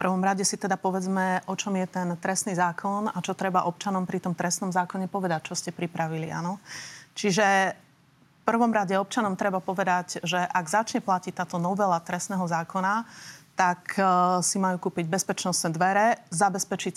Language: Slovak